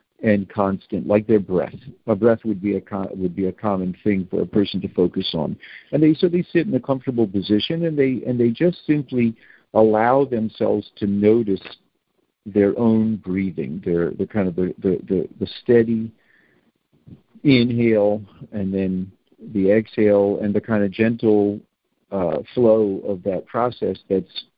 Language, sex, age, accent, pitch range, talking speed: English, male, 50-69, American, 100-130 Hz, 170 wpm